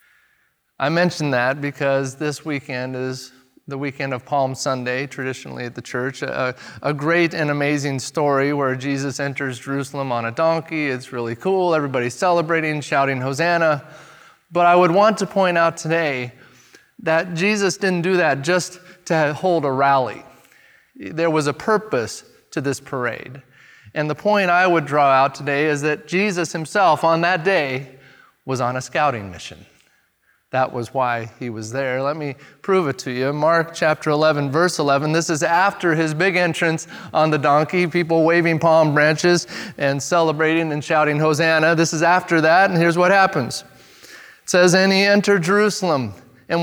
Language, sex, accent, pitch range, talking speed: English, male, American, 135-180 Hz, 170 wpm